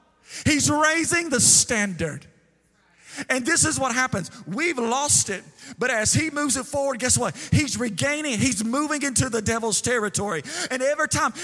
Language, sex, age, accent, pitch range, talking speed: English, male, 40-59, American, 195-275 Hz, 165 wpm